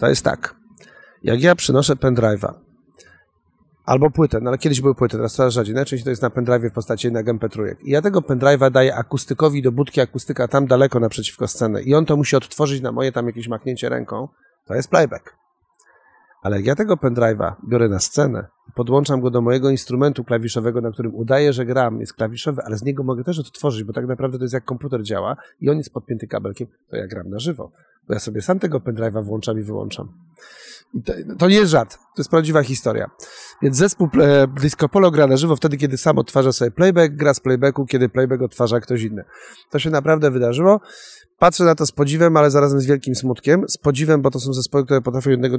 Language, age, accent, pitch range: Polish, 30-49, native, 120-145 Hz